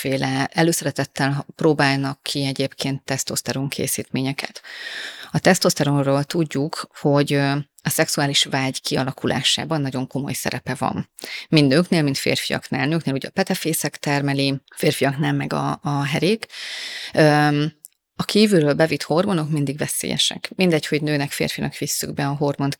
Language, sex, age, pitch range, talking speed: Hungarian, female, 30-49, 140-155 Hz, 125 wpm